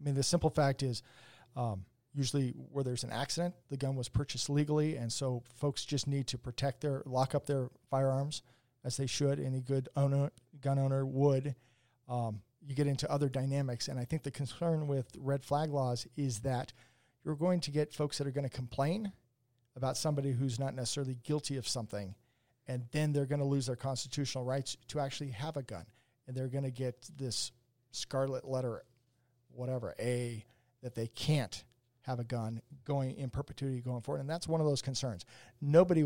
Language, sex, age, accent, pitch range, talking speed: English, male, 40-59, American, 120-140 Hz, 190 wpm